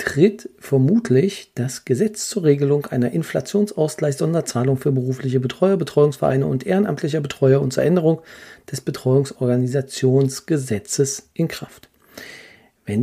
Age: 50-69